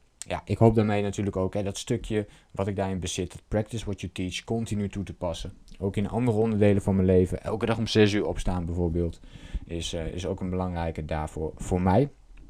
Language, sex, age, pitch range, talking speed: Dutch, male, 20-39, 90-110 Hz, 215 wpm